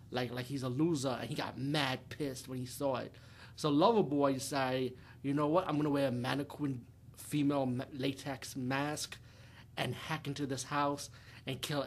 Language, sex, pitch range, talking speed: English, male, 125-160 Hz, 180 wpm